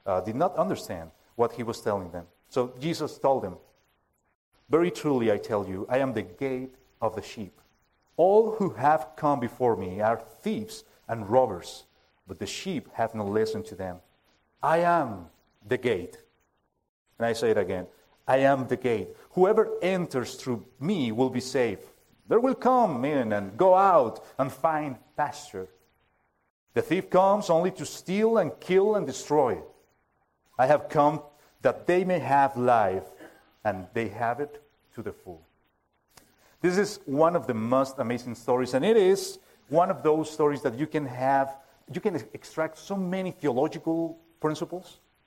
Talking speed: 165 wpm